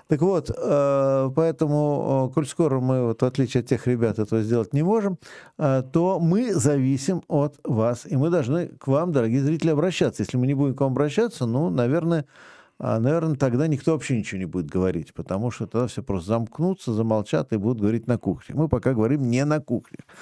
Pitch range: 110-145 Hz